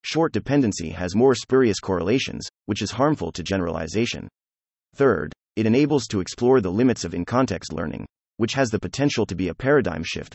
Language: English